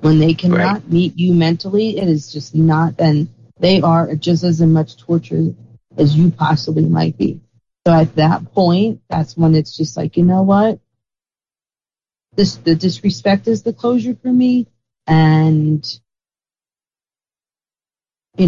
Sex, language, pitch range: female, English, 150-175 Hz